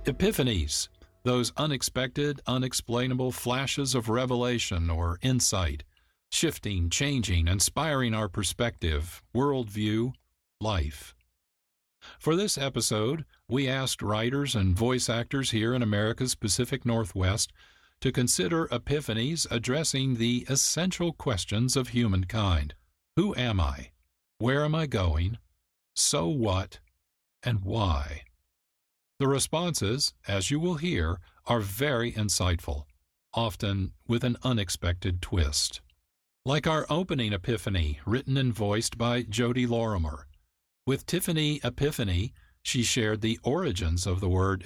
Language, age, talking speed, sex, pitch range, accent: English, 50-69, 115 wpm, male, 90-130 Hz, American